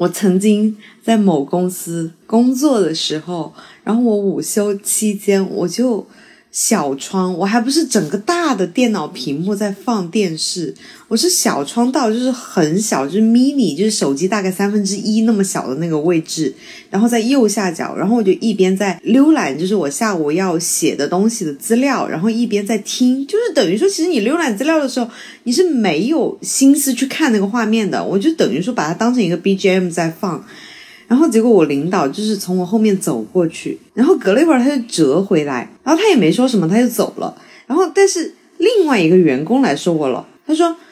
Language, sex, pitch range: Chinese, female, 185-260 Hz